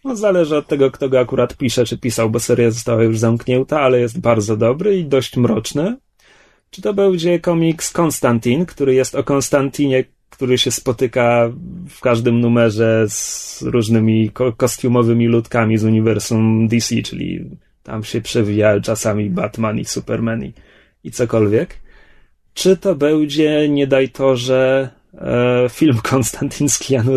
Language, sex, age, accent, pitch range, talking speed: Polish, male, 30-49, native, 120-170 Hz, 140 wpm